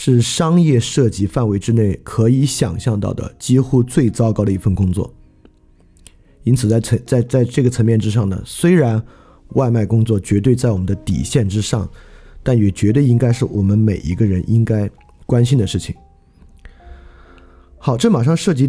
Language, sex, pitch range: Chinese, male, 95-130 Hz